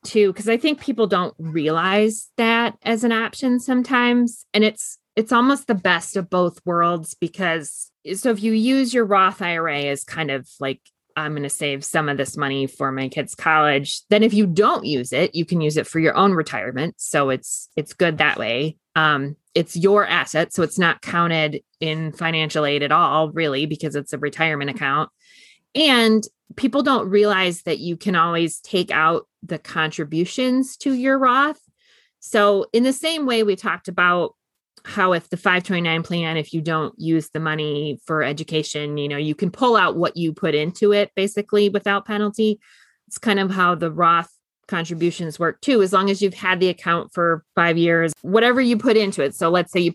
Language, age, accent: English, 30-49, American